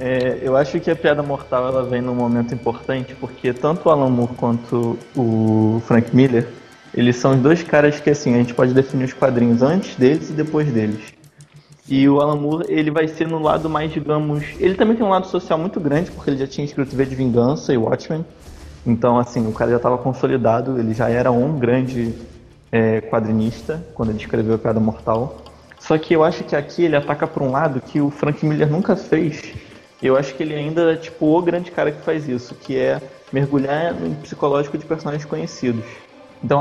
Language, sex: Portuguese, male